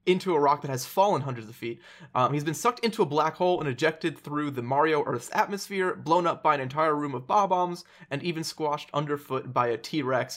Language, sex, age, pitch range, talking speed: English, male, 20-39, 125-155 Hz, 225 wpm